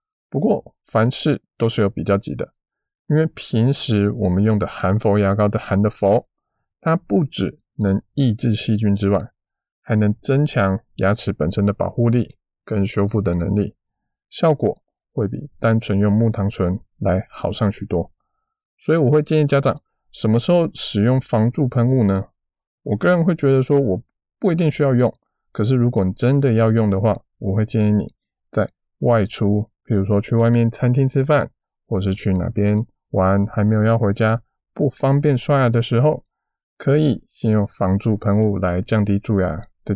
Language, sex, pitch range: Chinese, male, 100-125 Hz